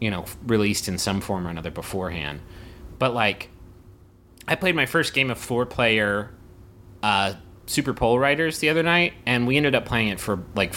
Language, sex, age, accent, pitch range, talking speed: English, male, 30-49, American, 95-125 Hz, 185 wpm